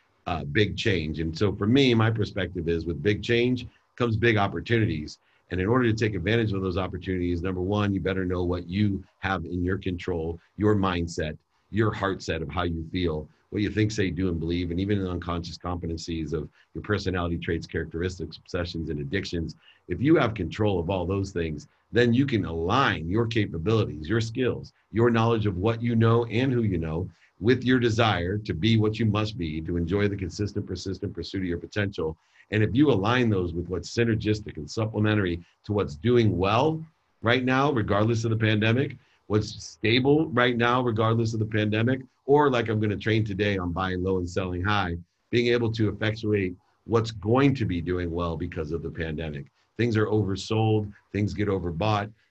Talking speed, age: 195 wpm, 50-69